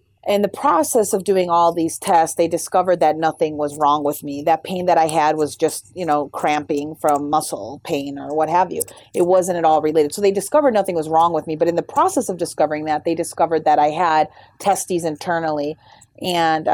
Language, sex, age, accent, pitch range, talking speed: English, female, 30-49, American, 155-195 Hz, 220 wpm